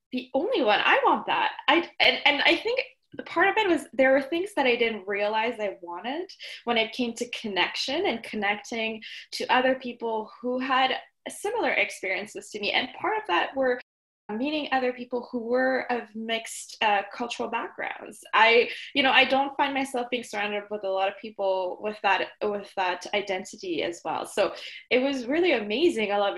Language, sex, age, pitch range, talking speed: English, female, 20-39, 210-275 Hz, 190 wpm